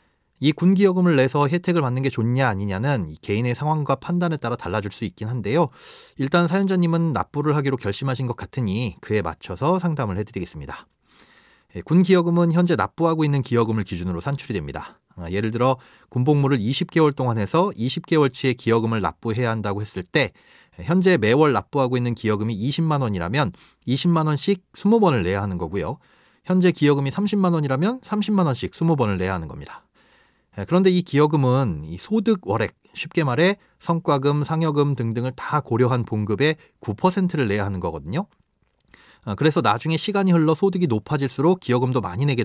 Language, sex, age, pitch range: Korean, male, 30-49, 115-165 Hz